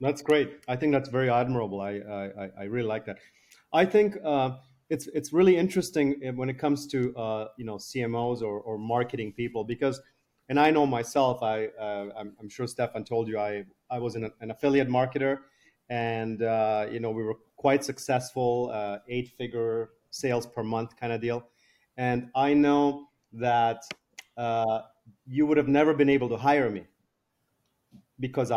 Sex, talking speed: male, 175 wpm